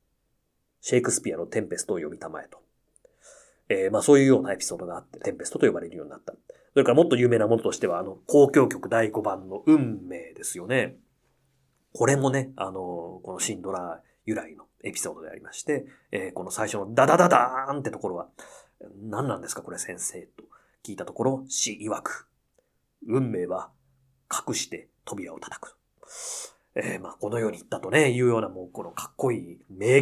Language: Japanese